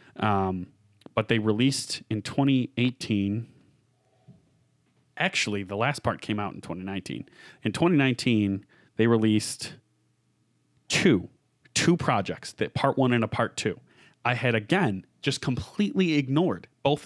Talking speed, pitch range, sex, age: 125 wpm, 105-130 Hz, male, 30-49